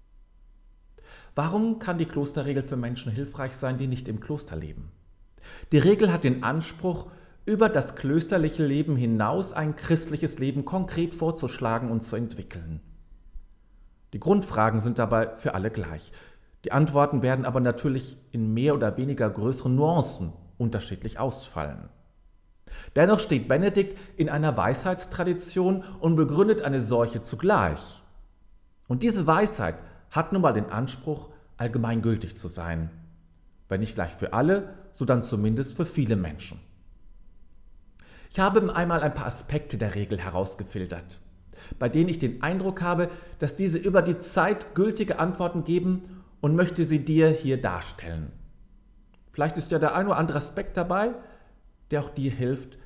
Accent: German